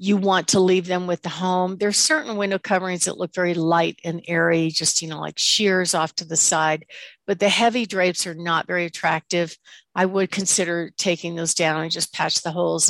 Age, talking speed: 50-69, 220 wpm